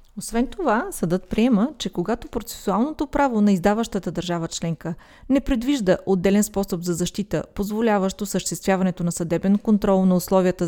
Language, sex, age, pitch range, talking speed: Bulgarian, female, 30-49, 180-230 Hz, 135 wpm